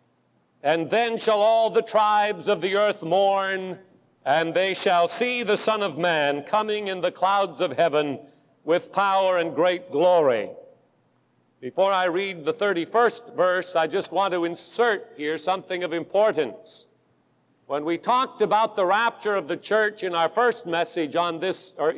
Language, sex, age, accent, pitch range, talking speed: English, male, 50-69, American, 175-230 Hz, 165 wpm